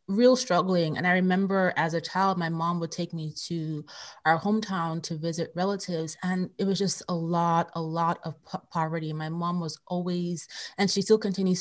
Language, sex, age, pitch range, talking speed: English, female, 20-39, 165-195 Hz, 190 wpm